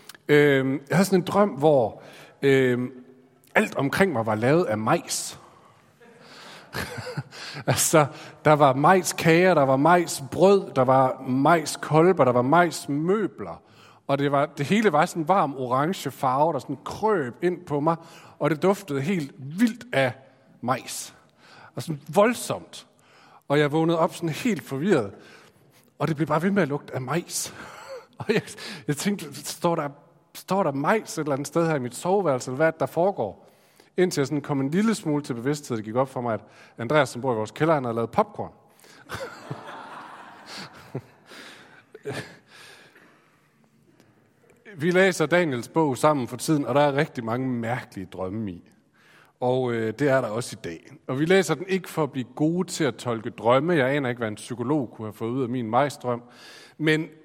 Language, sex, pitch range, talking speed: Danish, male, 130-170 Hz, 175 wpm